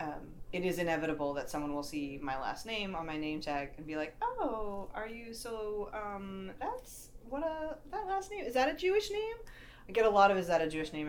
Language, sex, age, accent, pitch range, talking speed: English, female, 30-49, American, 155-210 Hz, 240 wpm